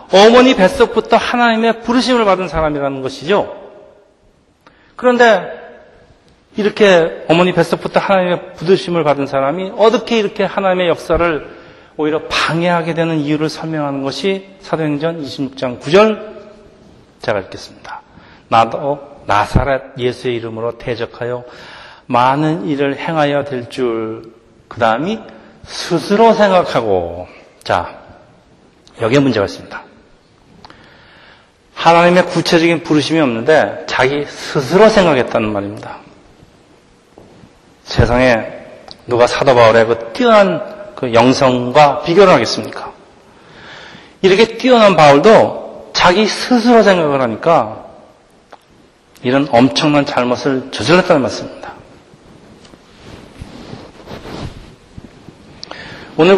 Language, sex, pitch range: Korean, male, 135-195 Hz